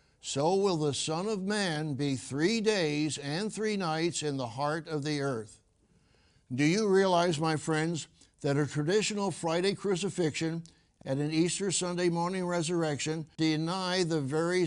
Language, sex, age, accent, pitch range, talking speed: English, male, 60-79, American, 150-180 Hz, 150 wpm